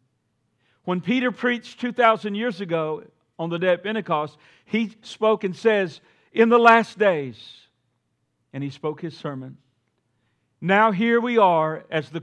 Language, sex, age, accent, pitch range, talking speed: English, male, 50-69, American, 130-195 Hz, 145 wpm